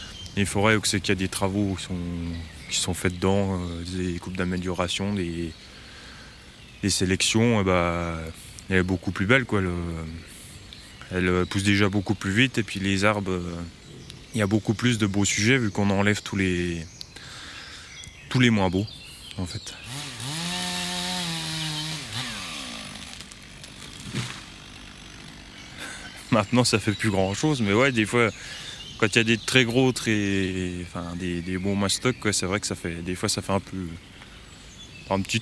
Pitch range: 90-115 Hz